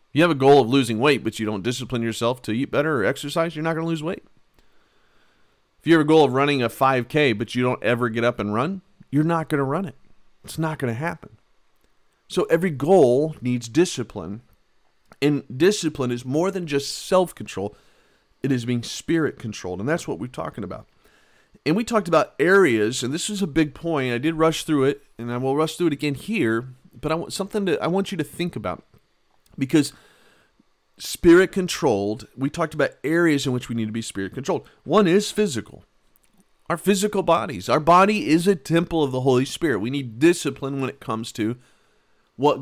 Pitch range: 120-165 Hz